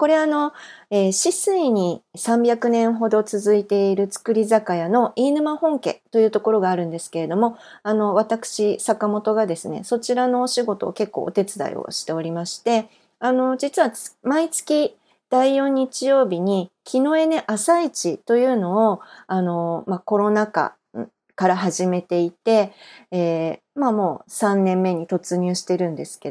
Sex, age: female, 40-59